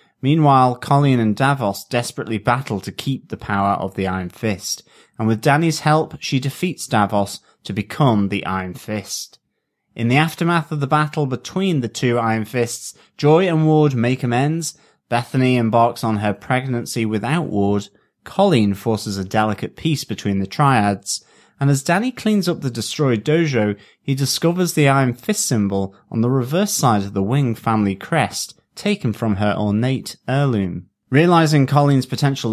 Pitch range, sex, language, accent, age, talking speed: 110-150 Hz, male, English, British, 30-49, 160 wpm